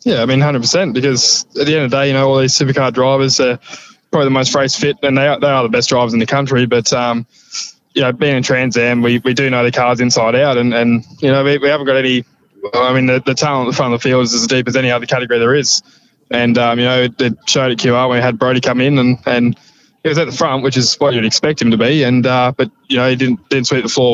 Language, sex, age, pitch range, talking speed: English, male, 20-39, 120-135 Hz, 300 wpm